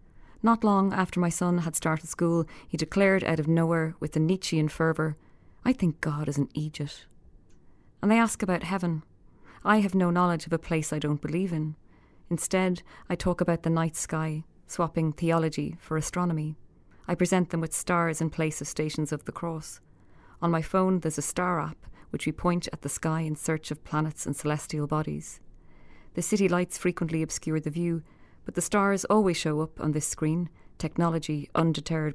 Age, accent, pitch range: 30-49, Irish, 155-175 Hz